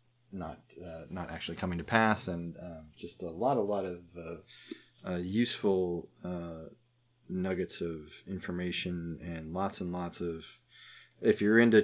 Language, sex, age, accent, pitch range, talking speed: English, male, 30-49, American, 85-105 Hz, 150 wpm